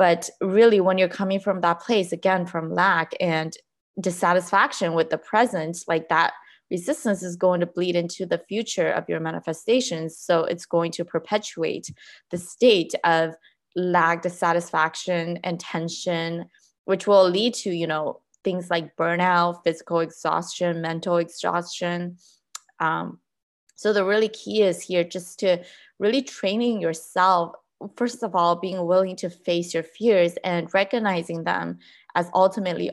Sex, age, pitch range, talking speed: female, 20-39, 170-195 Hz, 145 wpm